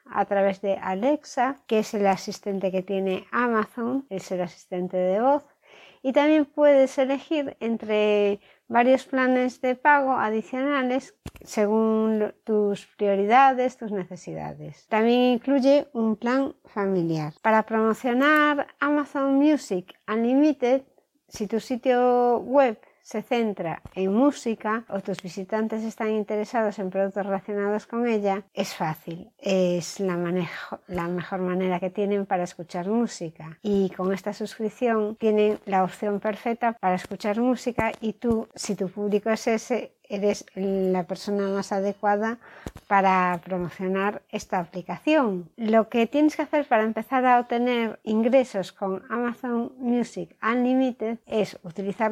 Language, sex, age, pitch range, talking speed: Spanish, female, 60-79, 195-245 Hz, 130 wpm